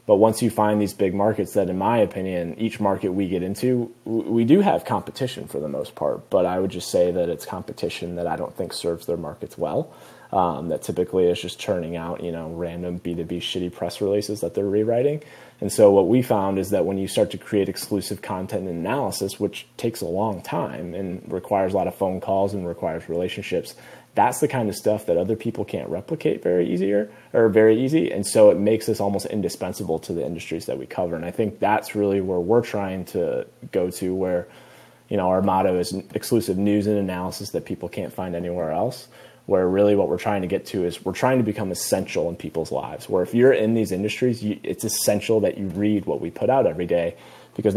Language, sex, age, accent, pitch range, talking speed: English, male, 30-49, American, 90-105 Hz, 225 wpm